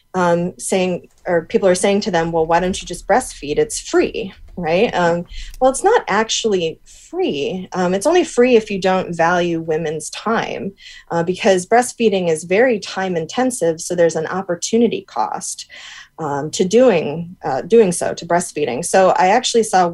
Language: English